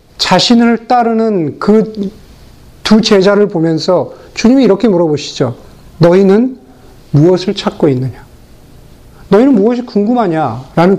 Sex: male